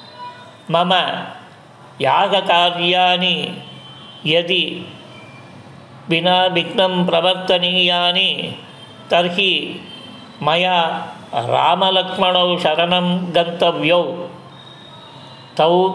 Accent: native